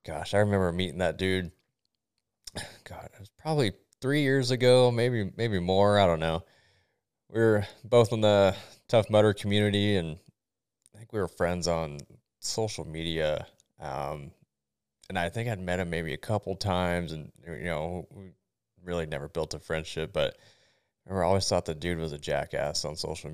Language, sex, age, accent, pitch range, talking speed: English, male, 20-39, American, 80-100 Hz, 175 wpm